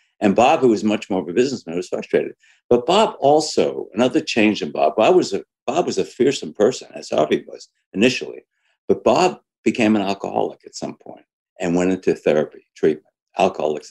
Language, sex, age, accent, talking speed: English, male, 60-79, American, 190 wpm